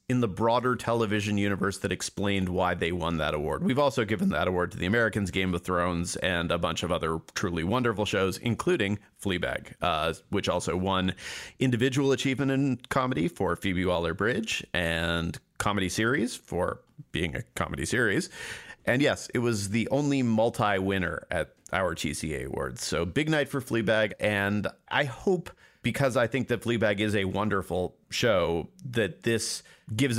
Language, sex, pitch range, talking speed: English, male, 90-115 Hz, 165 wpm